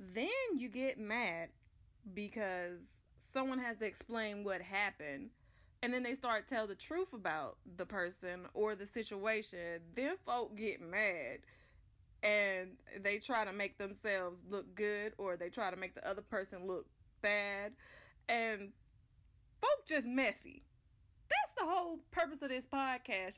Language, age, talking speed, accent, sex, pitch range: English, 20-39, 150 wpm, American, female, 195-270 Hz